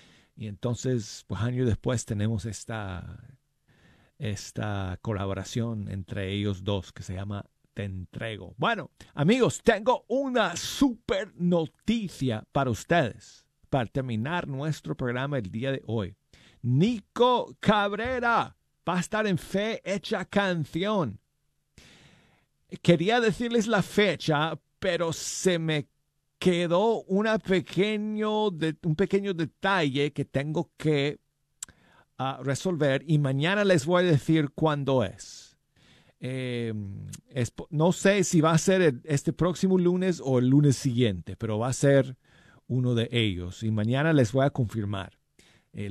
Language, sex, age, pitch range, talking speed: Spanish, male, 50-69, 115-175 Hz, 130 wpm